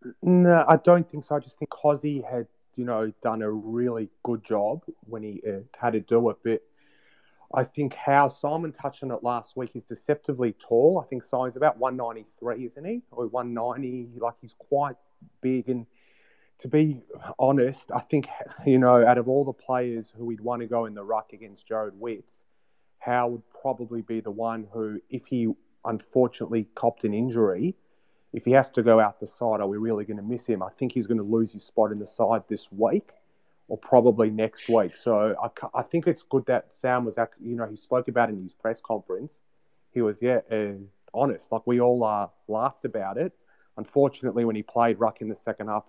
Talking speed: 210 wpm